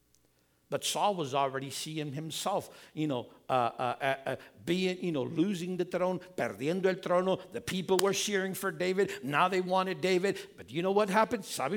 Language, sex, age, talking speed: English, male, 60-79, 185 wpm